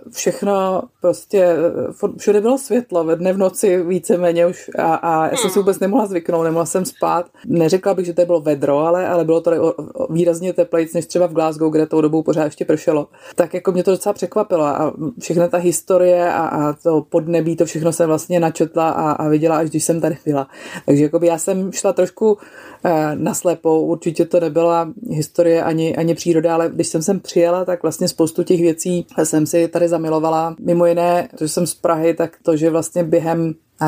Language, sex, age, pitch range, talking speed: Czech, female, 30-49, 160-175 Hz, 205 wpm